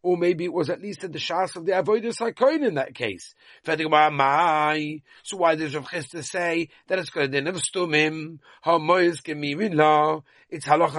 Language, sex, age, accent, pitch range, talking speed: English, male, 40-59, British, 135-175 Hz, 175 wpm